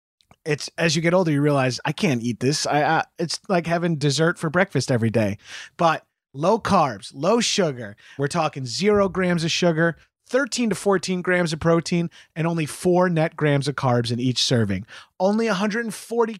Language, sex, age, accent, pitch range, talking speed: English, male, 30-49, American, 140-185 Hz, 185 wpm